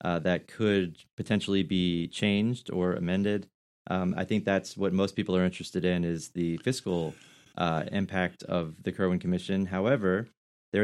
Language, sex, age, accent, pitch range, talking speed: English, male, 30-49, American, 90-105 Hz, 160 wpm